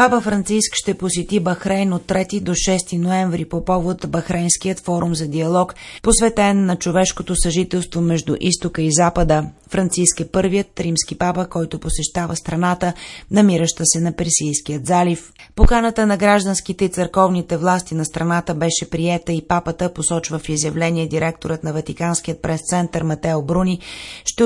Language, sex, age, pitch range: Bulgarian, female, 30-49, 165-185 Hz